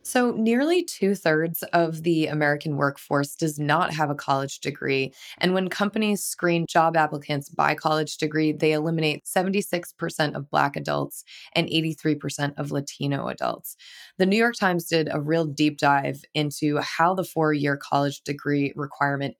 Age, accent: 20-39, American